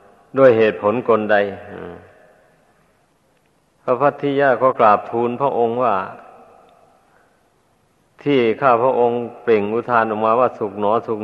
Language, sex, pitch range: Thai, male, 105-125 Hz